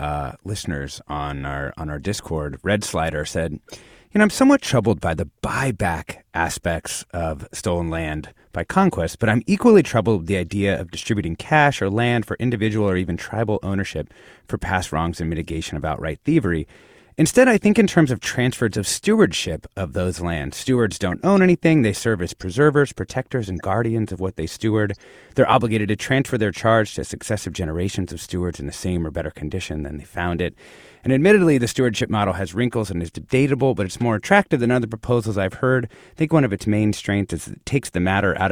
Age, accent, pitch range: 30-49, American, 85-120 Hz